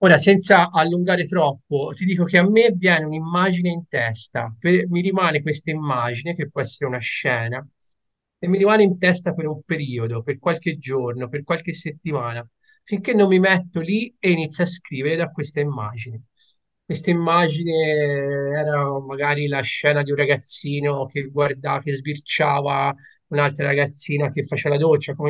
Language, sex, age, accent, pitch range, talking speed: Italian, male, 30-49, native, 145-185 Hz, 160 wpm